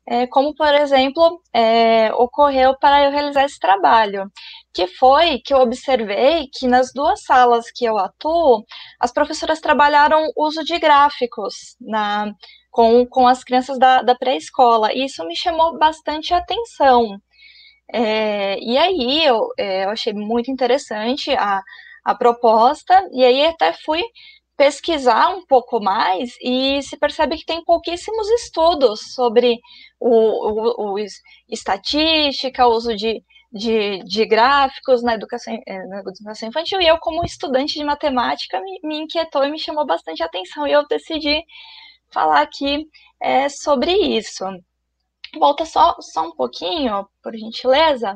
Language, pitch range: Portuguese, 225-315 Hz